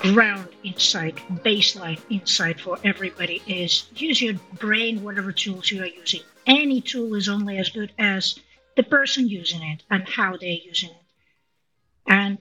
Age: 50-69